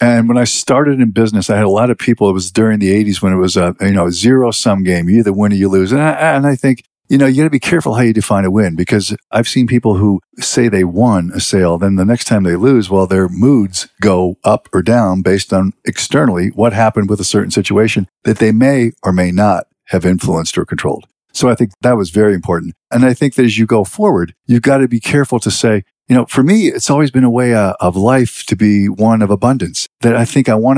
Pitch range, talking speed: 100-130 Hz, 255 wpm